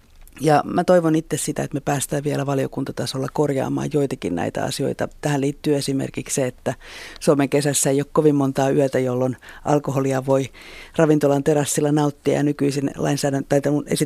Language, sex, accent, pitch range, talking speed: Finnish, female, native, 130-150 Hz, 160 wpm